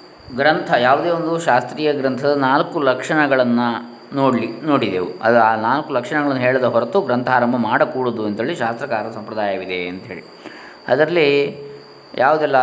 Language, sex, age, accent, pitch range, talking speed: Kannada, male, 20-39, native, 115-145 Hz, 115 wpm